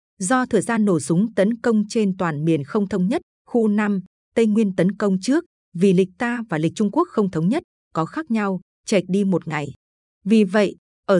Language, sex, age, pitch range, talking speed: Vietnamese, female, 20-39, 180-230 Hz, 215 wpm